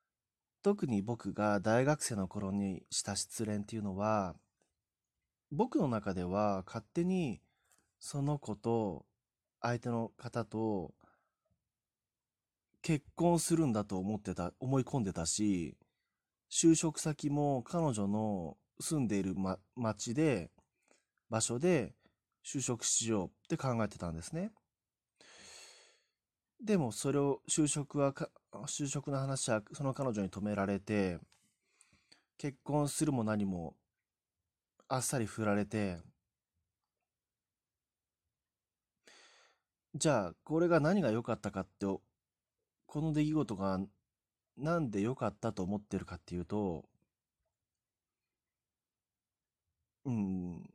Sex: male